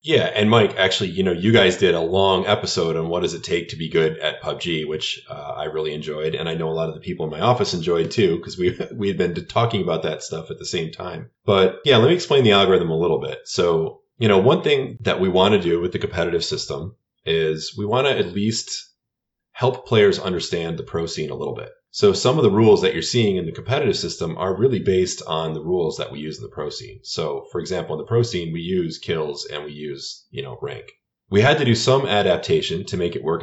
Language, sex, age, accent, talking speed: English, male, 30-49, American, 255 wpm